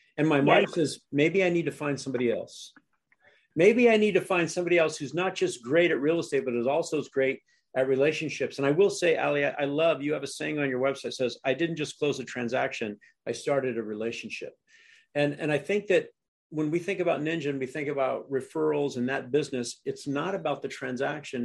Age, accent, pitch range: 50-69, American, 135-170 Hz